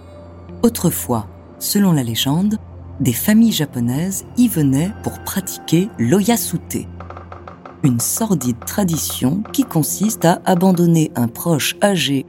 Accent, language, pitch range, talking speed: French, French, 120-185 Hz, 105 wpm